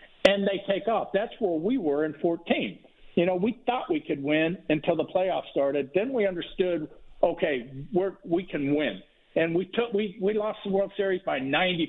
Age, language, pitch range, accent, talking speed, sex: 50-69, English, 150-200 Hz, American, 200 wpm, male